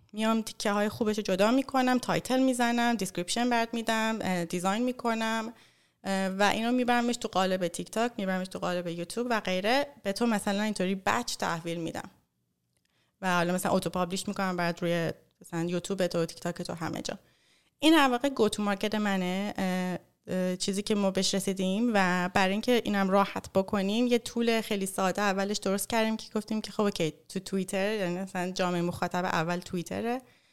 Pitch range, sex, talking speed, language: 180-225 Hz, female, 170 wpm, English